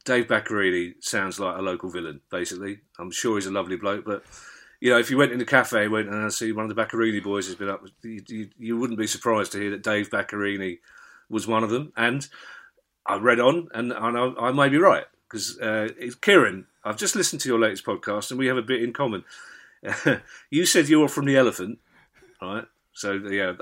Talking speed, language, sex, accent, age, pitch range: 220 wpm, English, male, British, 40-59, 100-125 Hz